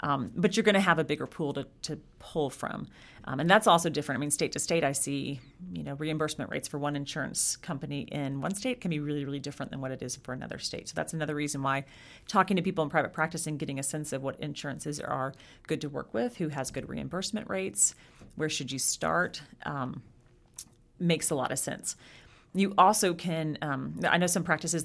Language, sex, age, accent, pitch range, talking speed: English, female, 40-59, American, 140-165 Hz, 230 wpm